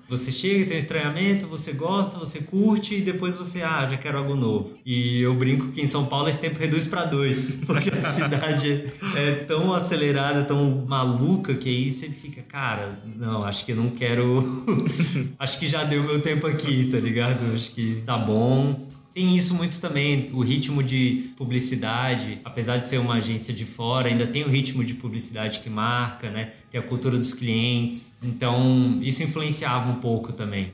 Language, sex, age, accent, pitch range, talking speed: Portuguese, male, 20-39, Brazilian, 115-140 Hz, 185 wpm